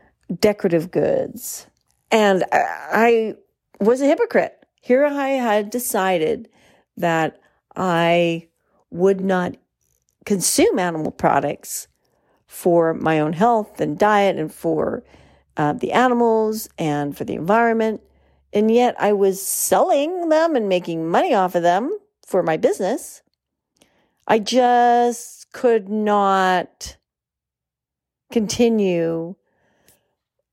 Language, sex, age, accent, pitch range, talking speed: English, female, 40-59, American, 165-220 Hz, 105 wpm